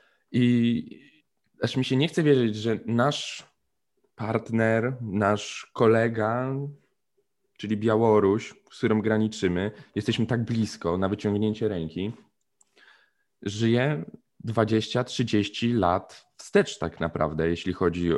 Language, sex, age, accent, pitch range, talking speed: Polish, male, 20-39, native, 90-115 Hz, 100 wpm